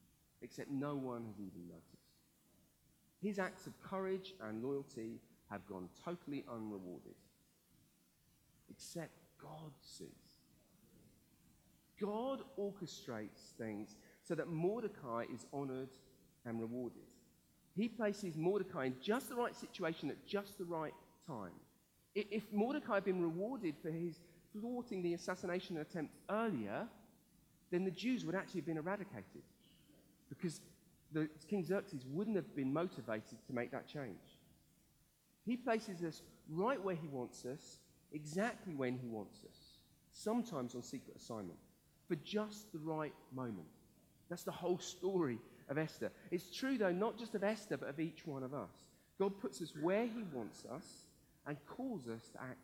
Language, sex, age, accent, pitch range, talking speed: English, male, 40-59, British, 135-200 Hz, 145 wpm